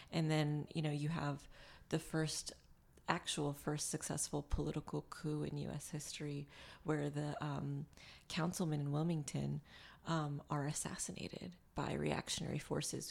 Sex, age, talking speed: female, 30-49, 130 wpm